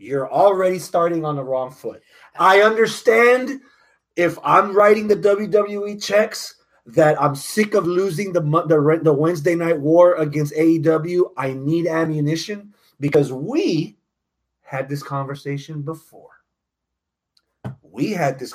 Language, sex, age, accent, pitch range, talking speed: English, male, 30-49, American, 150-205 Hz, 130 wpm